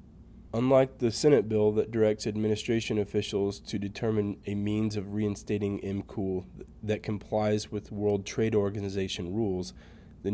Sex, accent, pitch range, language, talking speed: male, American, 100-110 Hz, English, 135 wpm